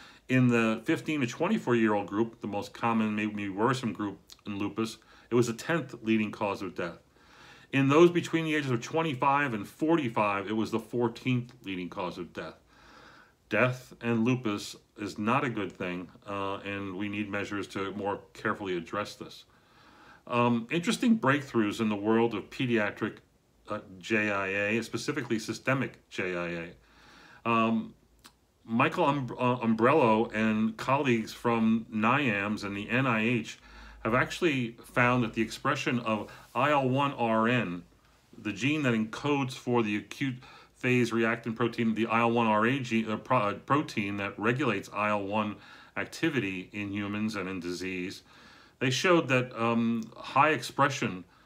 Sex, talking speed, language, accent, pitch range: male, 135 wpm, English, American, 105-125 Hz